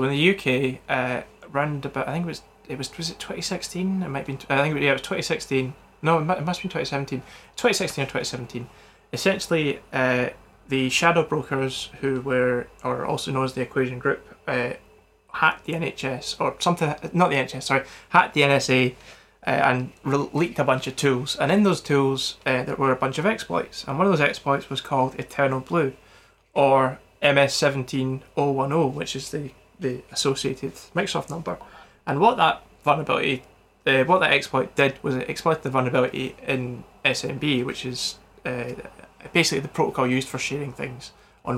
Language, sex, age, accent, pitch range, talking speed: English, male, 20-39, British, 130-150 Hz, 175 wpm